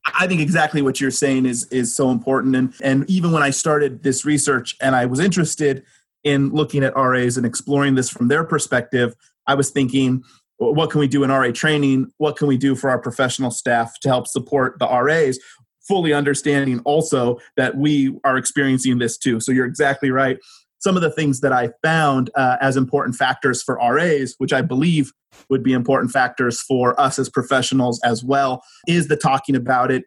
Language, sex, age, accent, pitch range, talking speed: English, male, 30-49, American, 130-145 Hz, 200 wpm